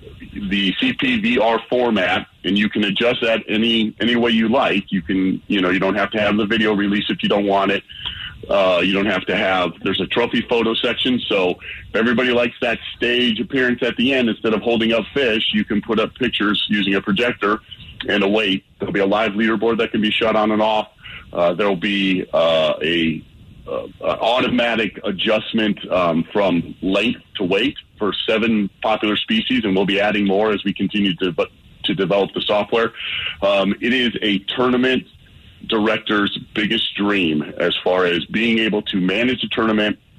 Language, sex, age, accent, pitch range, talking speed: English, male, 40-59, American, 100-115 Hz, 190 wpm